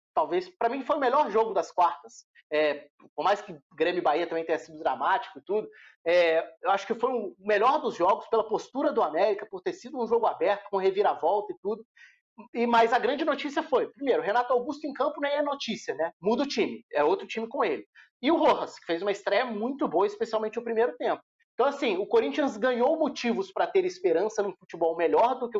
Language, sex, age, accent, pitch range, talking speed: Portuguese, male, 30-49, Brazilian, 185-260 Hz, 225 wpm